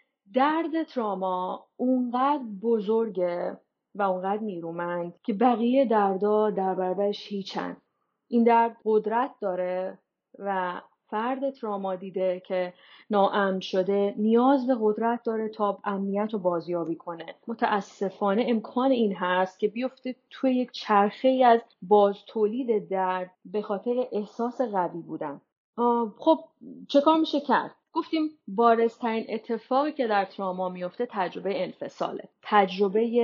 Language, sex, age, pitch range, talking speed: English, female, 30-49, 190-245 Hz, 120 wpm